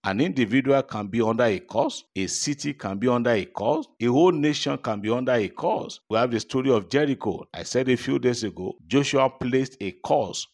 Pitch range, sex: 105-135 Hz, male